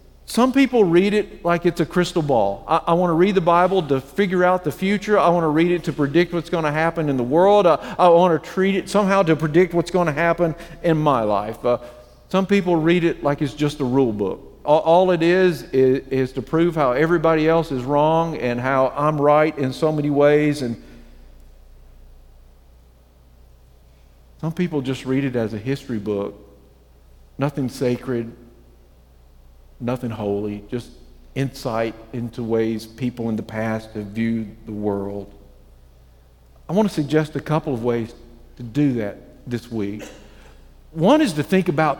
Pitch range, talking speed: 115-175 Hz, 180 wpm